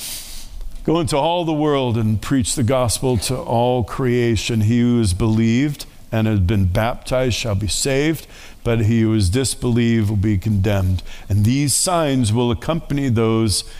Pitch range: 115-165 Hz